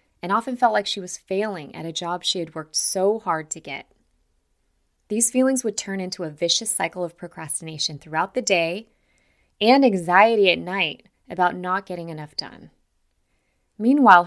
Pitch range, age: 160-225 Hz, 20-39